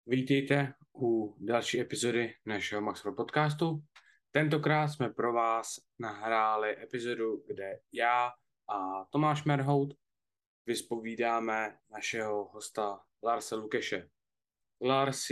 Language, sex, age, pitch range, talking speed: Czech, male, 20-39, 105-130 Hz, 95 wpm